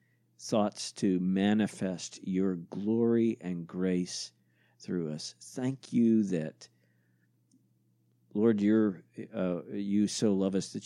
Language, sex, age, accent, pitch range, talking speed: English, male, 50-69, American, 75-110 Hz, 110 wpm